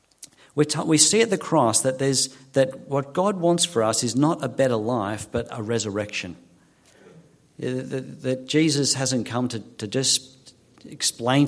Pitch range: 110-135 Hz